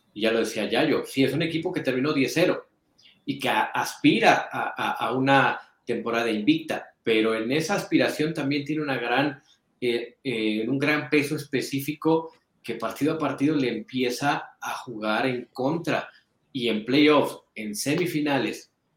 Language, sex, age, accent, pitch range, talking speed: Spanish, male, 40-59, Mexican, 115-150 Hz, 160 wpm